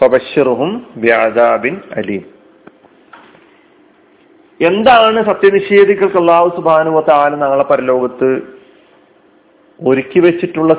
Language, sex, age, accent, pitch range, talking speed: Malayalam, male, 40-59, native, 125-170 Hz, 60 wpm